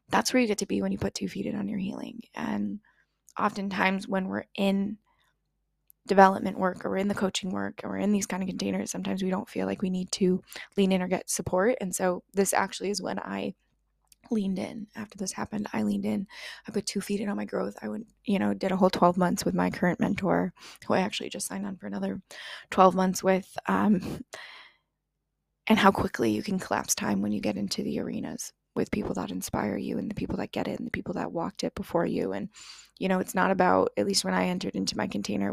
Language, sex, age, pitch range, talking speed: English, female, 20-39, 175-205 Hz, 240 wpm